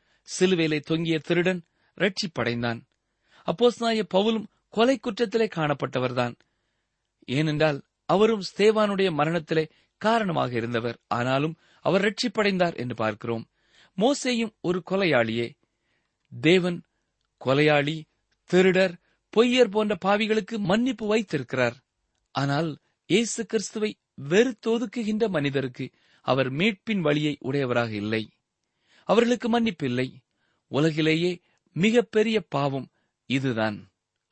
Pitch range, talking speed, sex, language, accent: 135-215 Hz, 85 wpm, male, Tamil, native